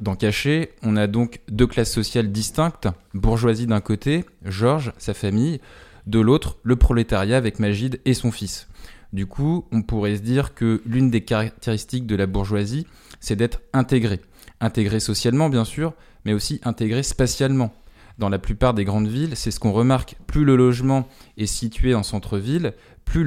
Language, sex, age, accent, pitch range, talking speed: French, male, 20-39, French, 105-125 Hz, 170 wpm